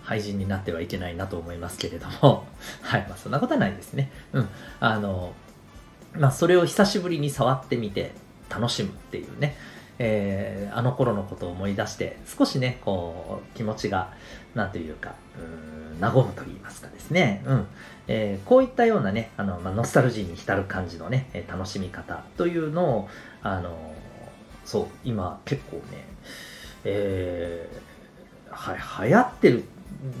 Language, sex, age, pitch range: Japanese, male, 40-59, 95-145 Hz